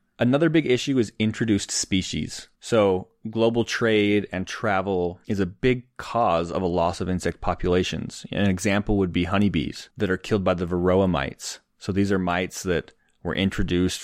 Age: 20-39